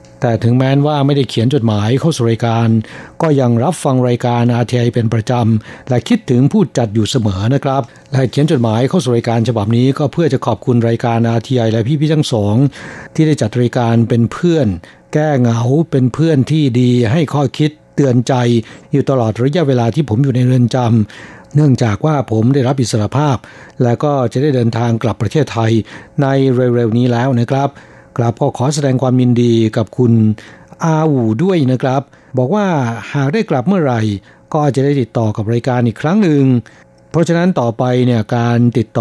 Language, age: Thai, 60-79